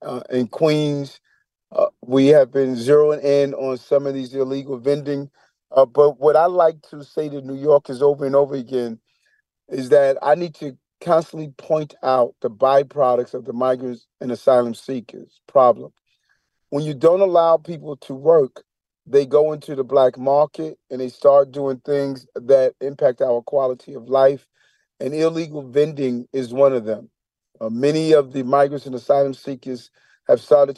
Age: 40-59